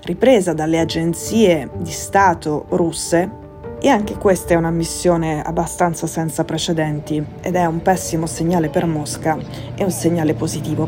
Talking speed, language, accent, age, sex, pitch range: 145 wpm, Italian, native, 20-39, female, 150-175 Hz